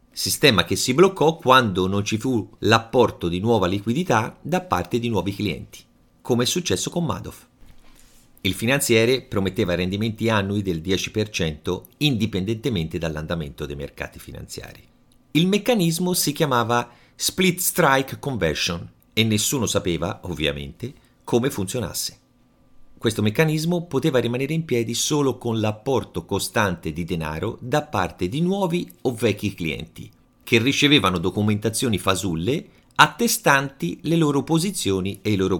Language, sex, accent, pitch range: Italian, male, native, 95-135 Hz